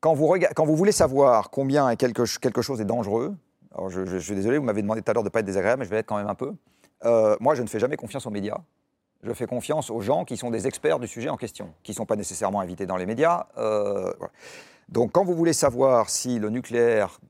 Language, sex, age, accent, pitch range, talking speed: French, male, 40-59, French, 105-145 Hz, 260 wpm